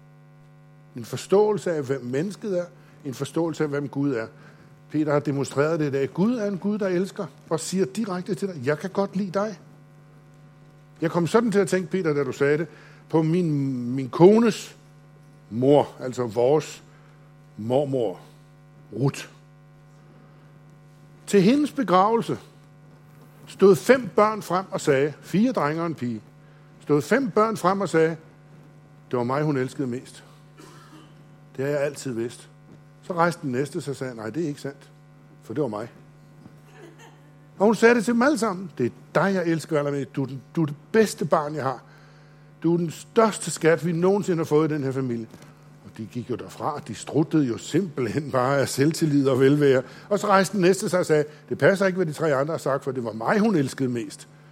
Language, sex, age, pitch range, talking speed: Danish, male, 60-79, 145-175 Hz, 190 wpm